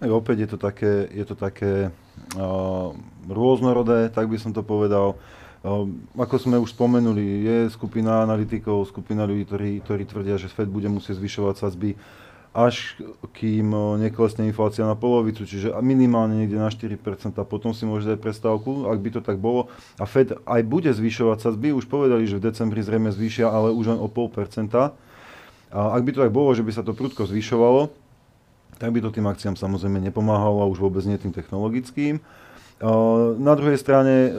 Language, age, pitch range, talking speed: Slovak, 30-49, 105-125 Hz, 175 wpm